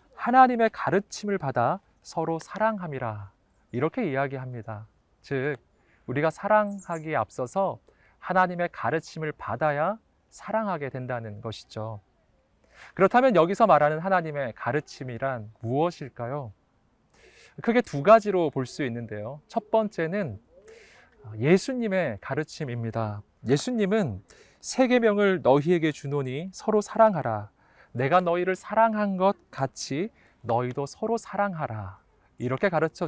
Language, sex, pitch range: Korean, male, 120-185 Hz